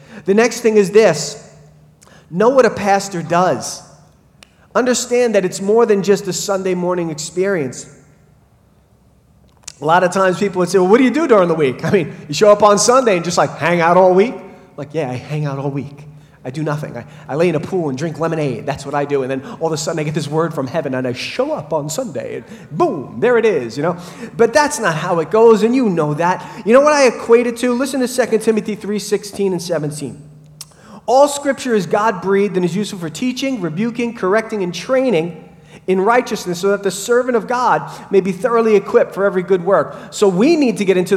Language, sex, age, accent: English, male, 30-49, American